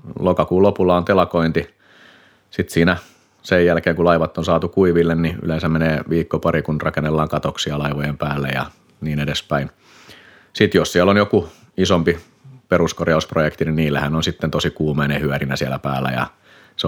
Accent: native